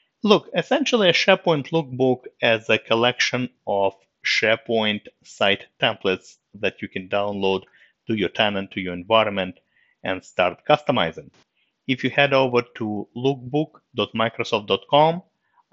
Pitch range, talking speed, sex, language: 95-125 Hz, 120 wpm, male, English